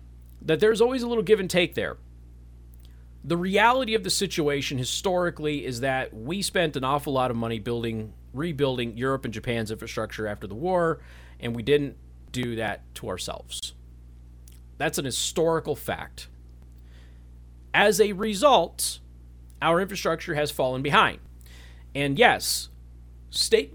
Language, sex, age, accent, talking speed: English, male, 40-59, American, 140 wpm